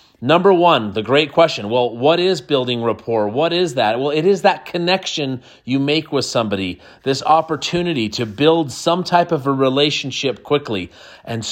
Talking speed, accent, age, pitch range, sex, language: 170 wpm, American, 30-49, 120-165 Hz, male, English